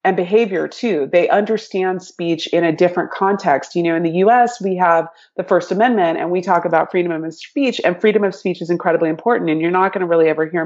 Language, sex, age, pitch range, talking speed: English, female, 30-49, 160-190 Hz, 235 wpm